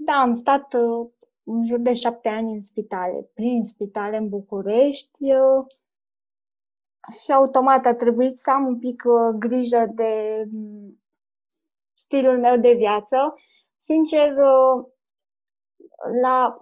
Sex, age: female, 20-39